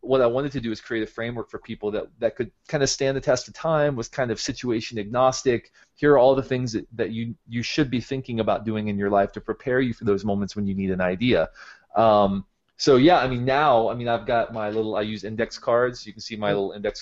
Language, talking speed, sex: English, 270 wpm, male